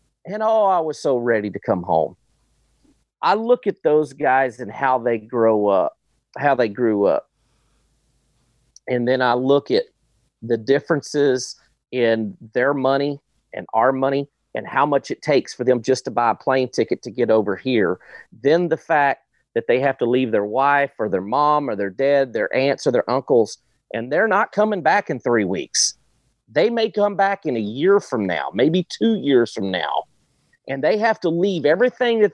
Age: 40-59